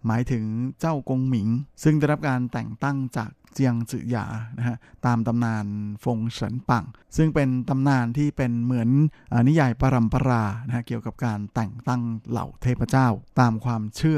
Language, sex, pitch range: Thai, male, 110-130 Hz